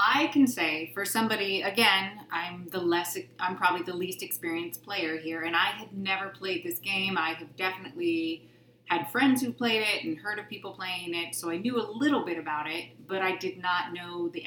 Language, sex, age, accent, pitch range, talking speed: English, female, 30-49, American, 180-240 Hz, 210 wpm